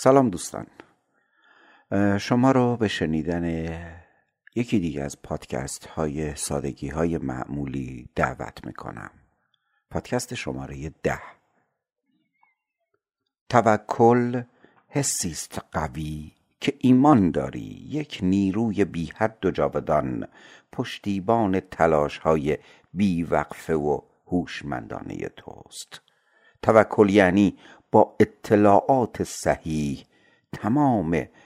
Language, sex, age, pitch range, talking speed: Persian, male, 60-79, 80-125 Hz, 80 wpm